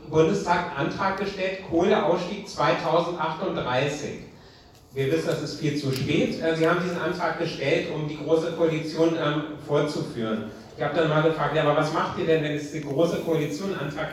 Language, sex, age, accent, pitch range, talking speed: German, male, 40-59, German, 145-175 Hz, 160 wpm